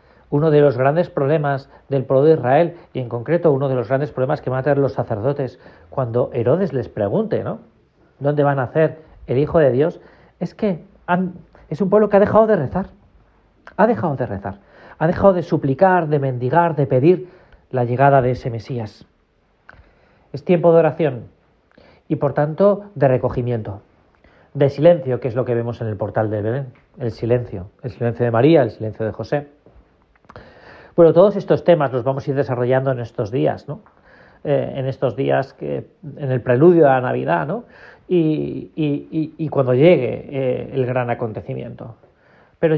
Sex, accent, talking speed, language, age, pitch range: male, Spanish, 180 wpm, Spanish, 40-59, 120-165 Hz